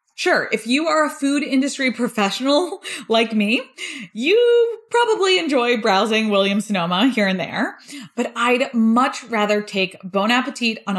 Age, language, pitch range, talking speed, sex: 20-39, English, 185-250 Hz, 145 wpm, female